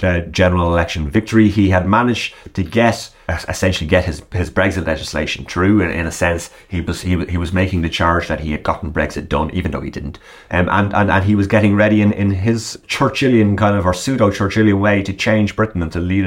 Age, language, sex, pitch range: 30-49, English, male, 85-110 Hz